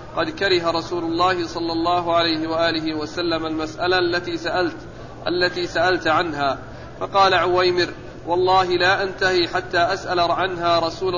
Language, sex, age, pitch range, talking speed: Arabic, male, 40-59, 165-185 Hz, 130 wpm